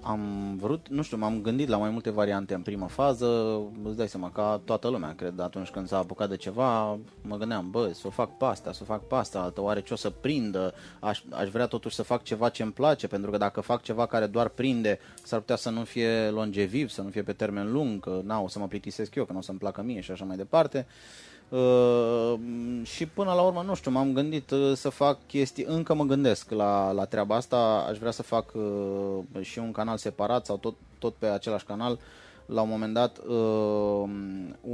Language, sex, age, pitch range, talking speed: Romanian, male, 20-39, 105-120 Hz, 220 wpm